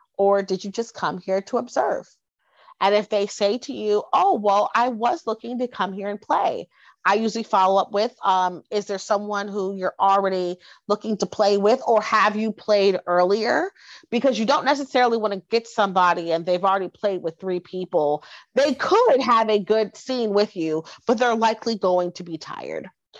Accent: American